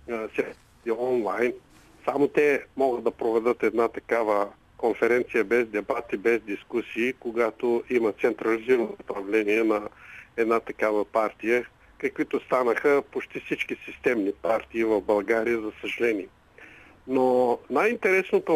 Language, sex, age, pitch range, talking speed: Bulgarian, male, 50-69, 115-160 Hz, 105 wpm